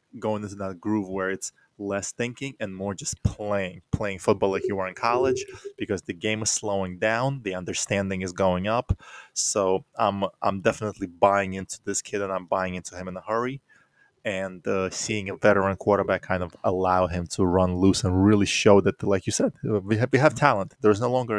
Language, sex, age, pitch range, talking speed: English, male, 20-39, 95-115 Hz, 210 wpm